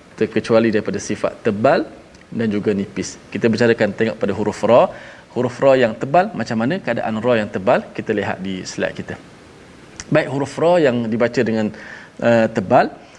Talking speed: 165 wpm